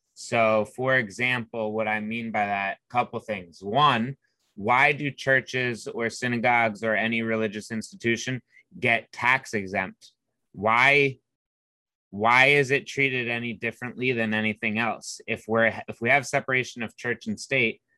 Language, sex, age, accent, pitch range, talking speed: English, male, 20-39, American, 105-120 Hz, 145 wpm